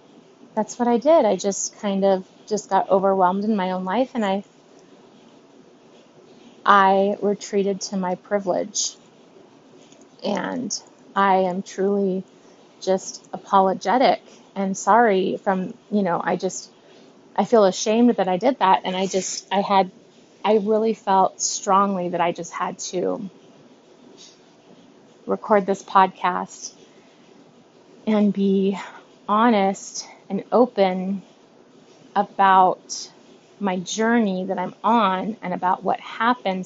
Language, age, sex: English, 30-49, female